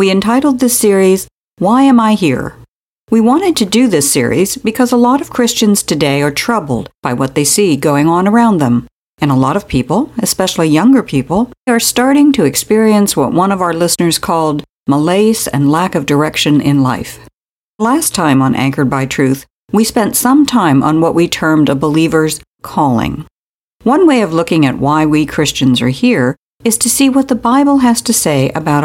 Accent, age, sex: American, 60-79, female